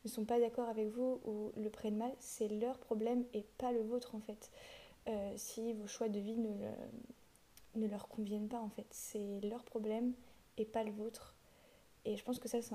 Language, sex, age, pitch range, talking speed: French, female, 20-39, 215-245 Hz, 220 wpm